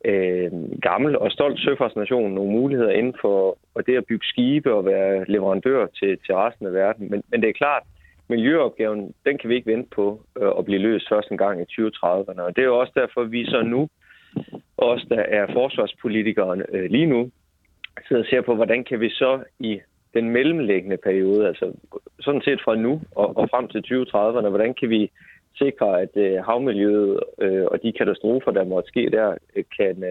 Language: Danish